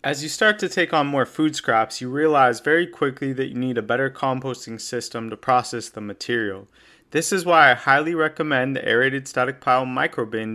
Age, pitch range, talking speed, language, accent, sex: 30-49, 120-150 Hz, 200 wpm, English, American, male